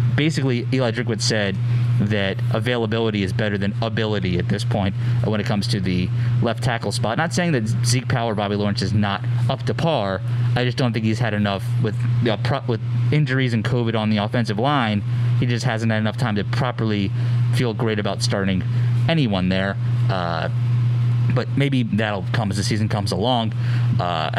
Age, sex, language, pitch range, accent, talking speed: 30-49, male, English, 105-120 Hz, American, 190 wpm